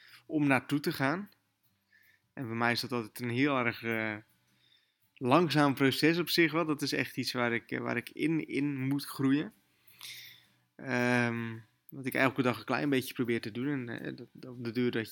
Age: 20-39